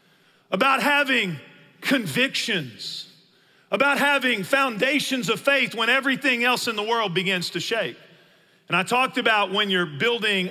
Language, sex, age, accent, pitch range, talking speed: English, male, 40-59, American, 180-230 Hz, 135 wpm